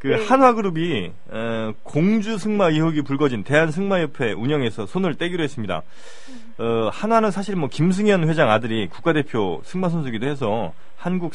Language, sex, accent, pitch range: Korean, male, native, 115-180 Hz